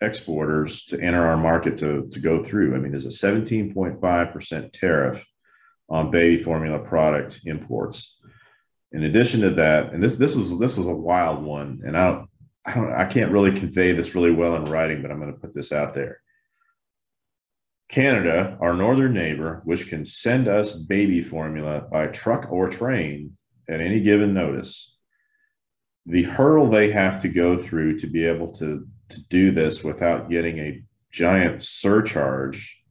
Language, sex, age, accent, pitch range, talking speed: English, male, 40-59, American, 80-100 Hz, 165 wpm